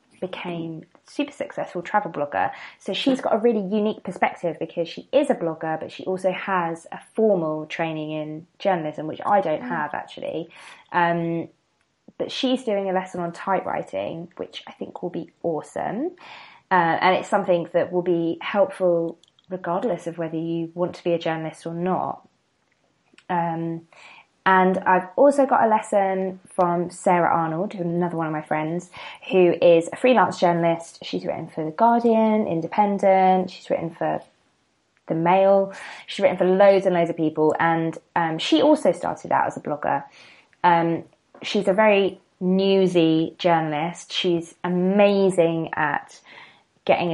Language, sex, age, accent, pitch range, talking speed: English, female, 20-39, British, 165-195 Hz, 160 wpm